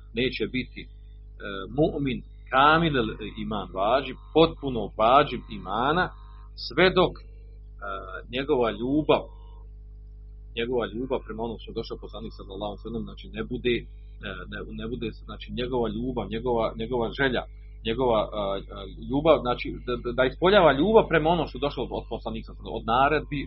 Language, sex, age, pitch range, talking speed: Croatian, male, 40-59, 105-140 Hz, 130 wpm